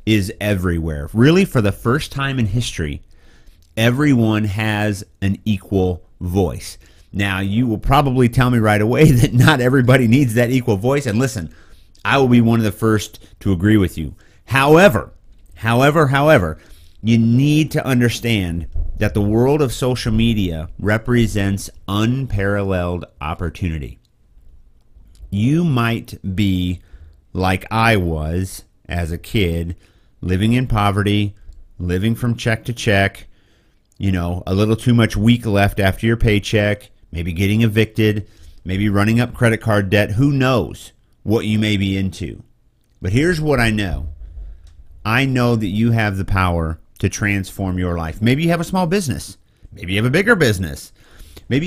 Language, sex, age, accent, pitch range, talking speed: English, male, 30-49, American, 90-120 Hz, 150 wpm